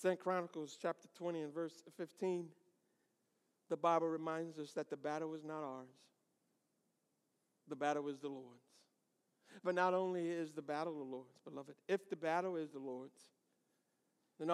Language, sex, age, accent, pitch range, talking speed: English, male, 50-69, American, 165-270 Hz, 155 wpm